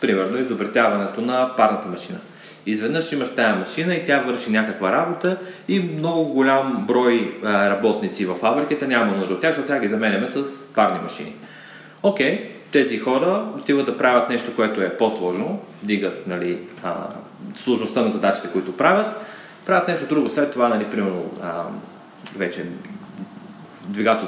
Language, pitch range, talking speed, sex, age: Bulgarian, 110-155 Hz, 150 wpm, male, 30-49